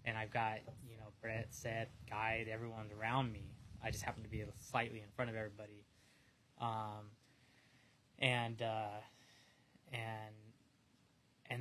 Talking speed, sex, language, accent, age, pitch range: 135 wpm, male, English, American, 20-39, 110-125 Hz